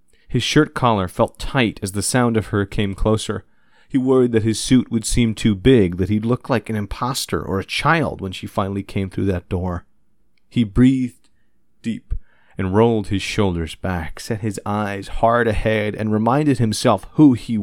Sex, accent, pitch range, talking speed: male, American, 90-115 Hz, 185 wpm